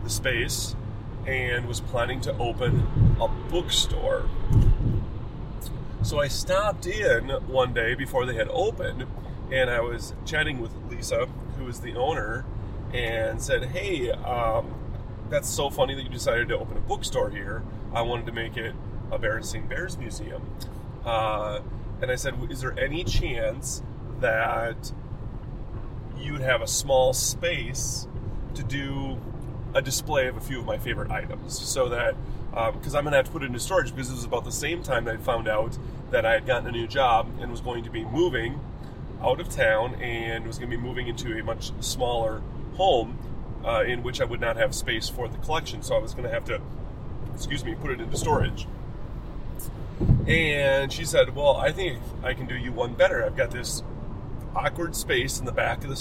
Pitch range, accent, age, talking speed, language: 110-130 Hz, American, 30-49, 185 wpm, English